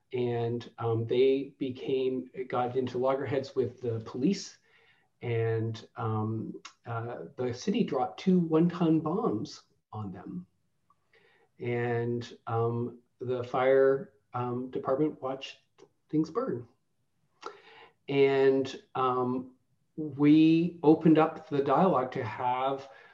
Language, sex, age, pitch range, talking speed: English, male, 40-59, 120-150 Hz, 105 wpm